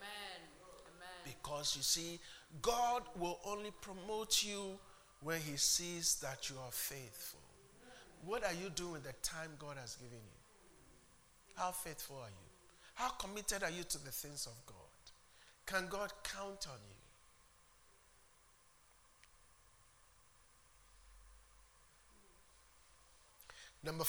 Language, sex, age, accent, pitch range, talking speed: English, male, 50-69, Nigerian, 140-175 Hz, 110 wpm